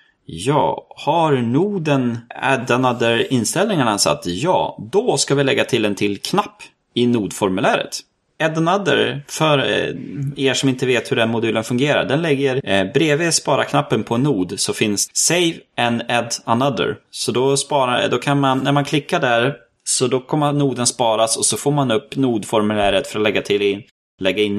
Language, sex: Swedish, male